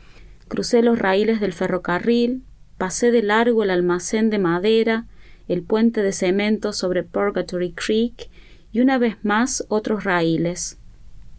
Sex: female